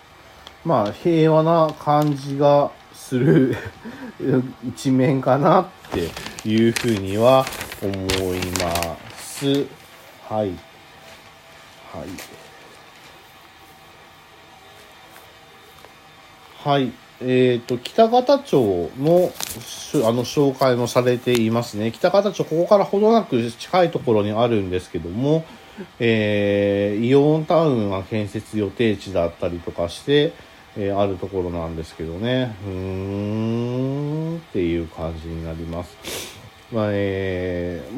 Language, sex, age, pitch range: Japanese, male, 40-59, 95-140 Hz